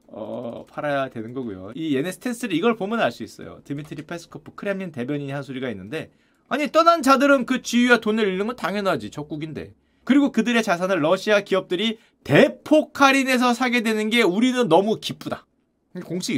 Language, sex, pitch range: Korean, male, 150-255 Hz